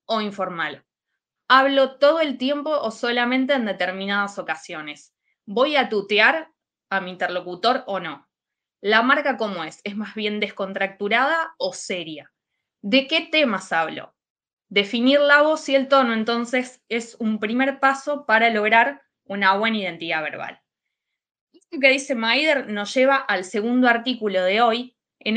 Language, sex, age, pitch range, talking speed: Spanish, female, 20-39, 195-270 Hz, 145 wpm